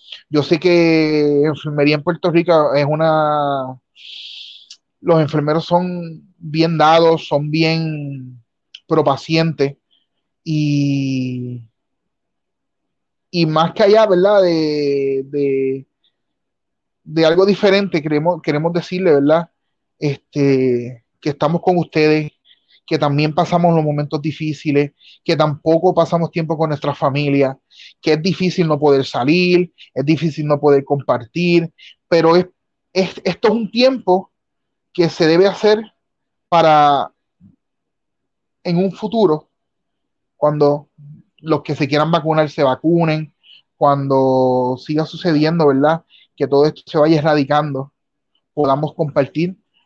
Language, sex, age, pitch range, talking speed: Spanish, male, 30-49, 145-170 Hz, 115 wpm